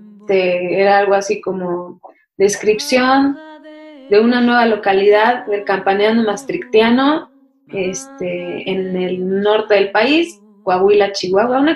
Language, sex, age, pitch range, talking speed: Spanish, female, 20-39, 210-270 Hz, 105 wpm